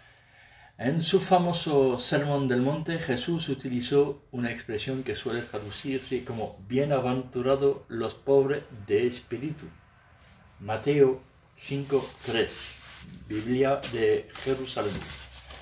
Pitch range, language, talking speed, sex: 110-140 Hz, Spanish, 90 wpm, male